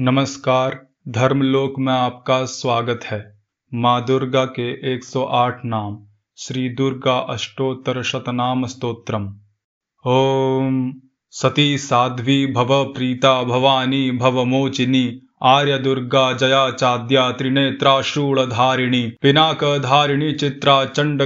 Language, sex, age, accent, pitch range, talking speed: Hindi, male, 20-39, native, 130-145 Hz, 95 wpm